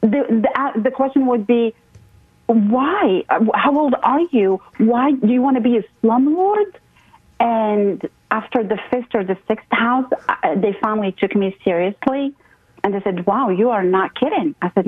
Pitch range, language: 185-230 Hz, English